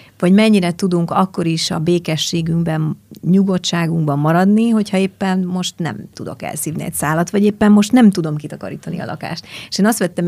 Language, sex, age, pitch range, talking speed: Hungarian, female, 30-49, 165-195 Hz, 170 wpm